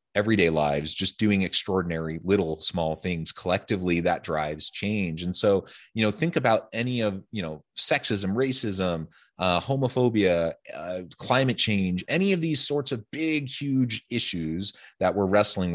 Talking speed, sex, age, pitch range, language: 150 wpm, male, 30-49, 90-110 Hz, English